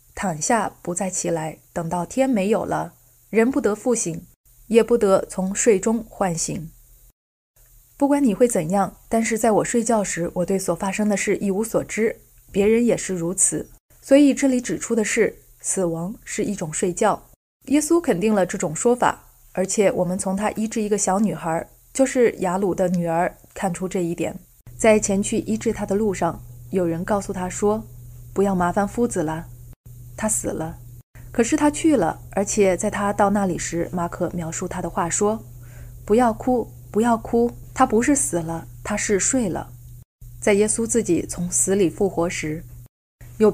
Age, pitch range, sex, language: 20-39, 170-220 Hz, female, Chinese